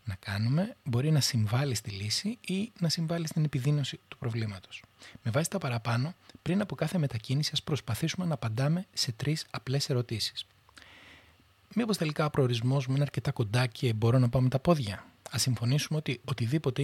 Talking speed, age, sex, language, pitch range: 175 wpm, 30-49, male, Greek, 115-145 Hz